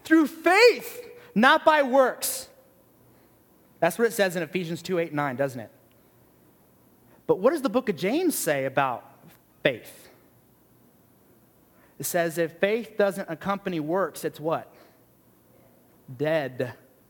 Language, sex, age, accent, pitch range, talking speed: English, male, 30-49, American, 165-245 Hz, 120 wpm